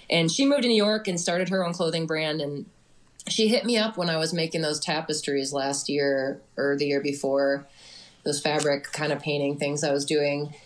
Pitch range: 140-175 Hz